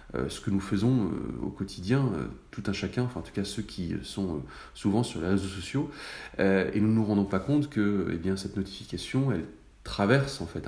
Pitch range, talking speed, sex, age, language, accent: 95-115 Hz, 235 wpm, male, 40-59, French, French